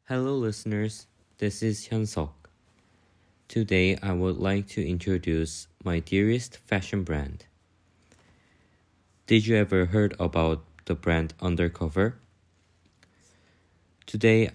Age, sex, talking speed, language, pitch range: 20-39, male, 100 wpm, English, 85-105 Hz